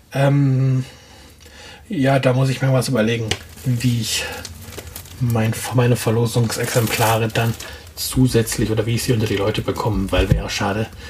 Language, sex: German, male